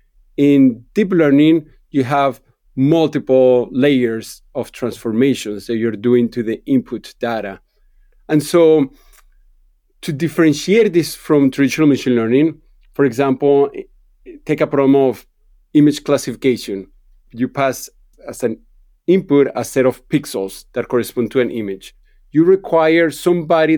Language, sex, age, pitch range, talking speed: English, male, 40-59, 125-150 Hz, 125 wpm